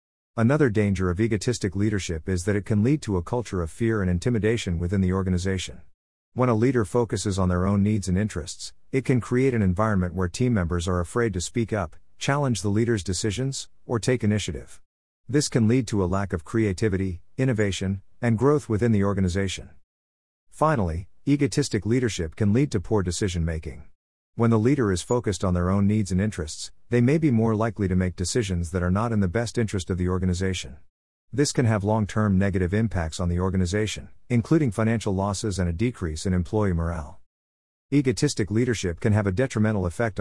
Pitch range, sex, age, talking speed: 90-115 Hz, male, 40-59, 190 wpm